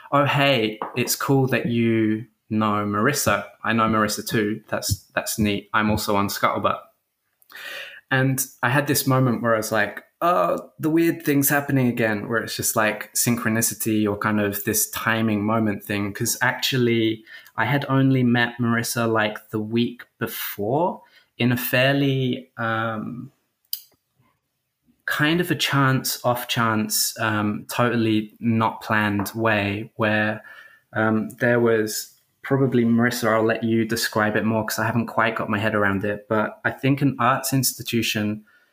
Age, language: 20-39, English